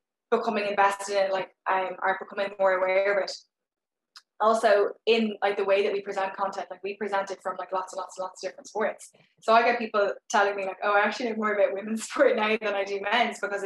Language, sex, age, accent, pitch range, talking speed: English, female, 10-29, Irish, 185-205 Hz, 240 wpm